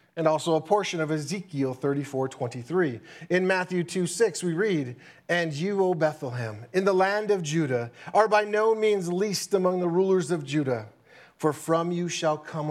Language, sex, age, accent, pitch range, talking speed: English, male, 40-59, American, 140-190 Hz, 180 wpm